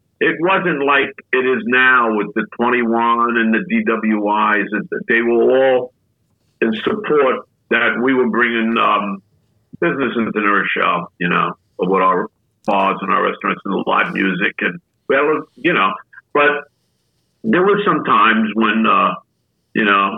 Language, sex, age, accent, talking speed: English, male, 50-69, American, 150 wpm